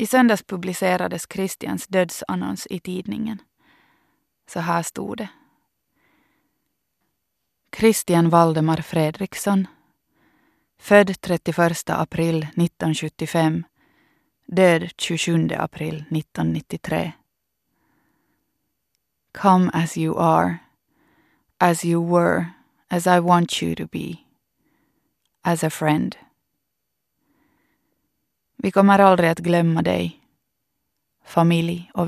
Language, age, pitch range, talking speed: Swedish, 20-39, 165-200 Hz, 85 wpm